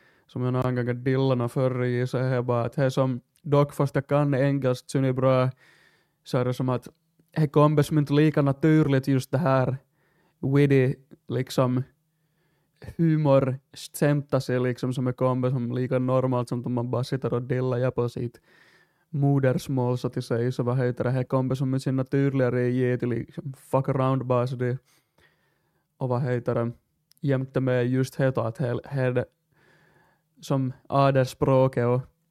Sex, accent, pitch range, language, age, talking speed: male, Finnish, 125-155 Hz, Swedish, 20-39, 145 wpm